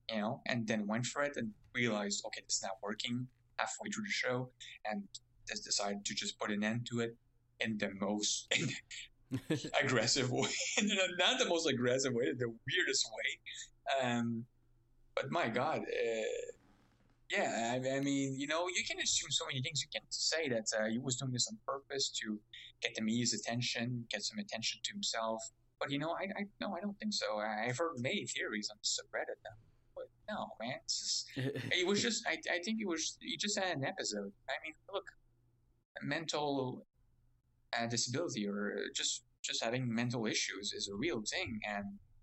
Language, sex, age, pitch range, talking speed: English, male, 20-39, 105-140 Hz, 180 wpm